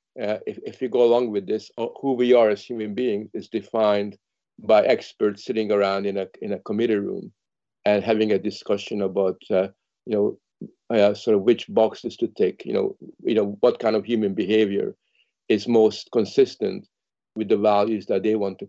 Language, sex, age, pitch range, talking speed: English, male, 50-69, 105-120 Hz, 195 wpm